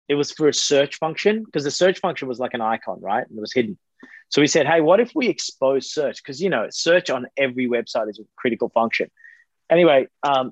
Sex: male